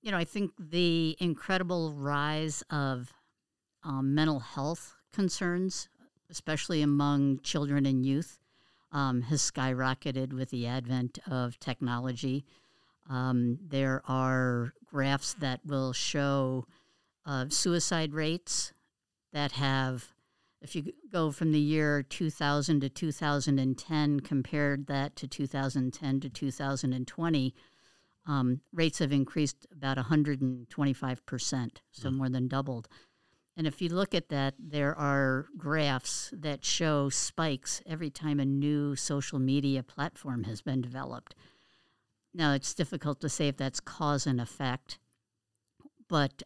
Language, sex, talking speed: English, female, 125 wpm